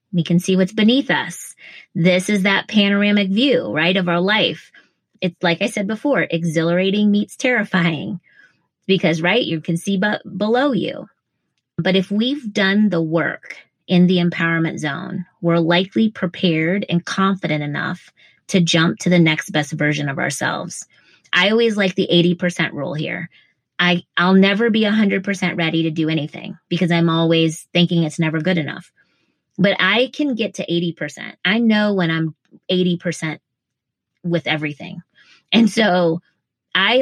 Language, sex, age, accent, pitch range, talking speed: English, female, 20-39, American, 170-205 Hz, 160 wpm